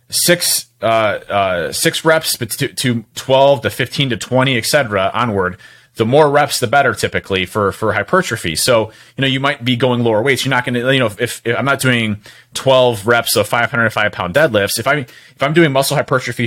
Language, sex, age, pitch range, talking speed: English, male, 30-49, 110-135 Hz, 195 wpm